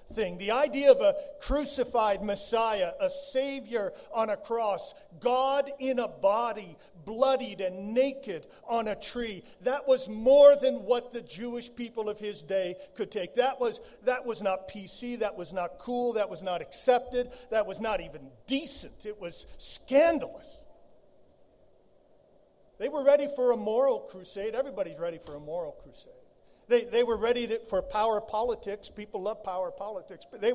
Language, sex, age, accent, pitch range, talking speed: English, male, 50-69, American, 200-270 Hz, 165 wpm